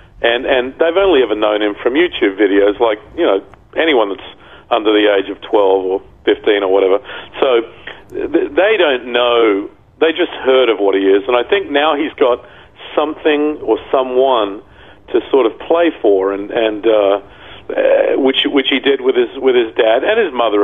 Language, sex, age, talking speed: English, male, 40-59, 190 wpm